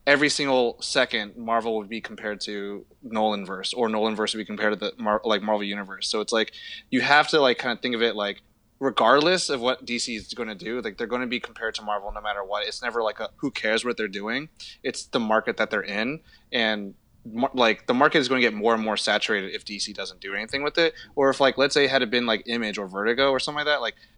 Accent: American